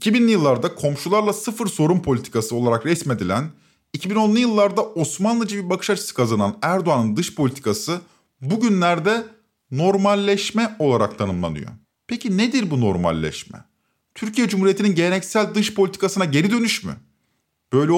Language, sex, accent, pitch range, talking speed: Turkish, male, native, 135-205 Hz, 115 wpm